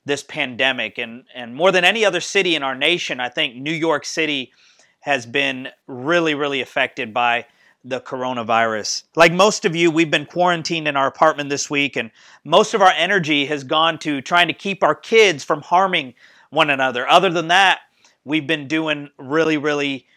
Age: 40-59